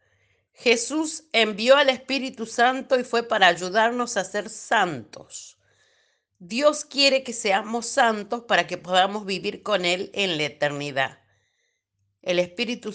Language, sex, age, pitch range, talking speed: Spanish, female, 50-69, 190-255 Hz, 130 wpm